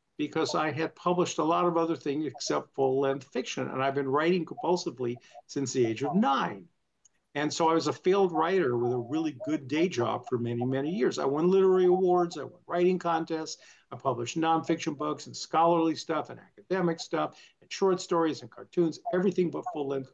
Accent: American